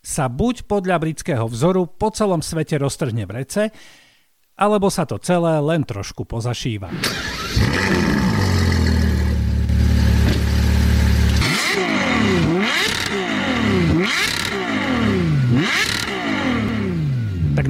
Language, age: Slovak, 50-69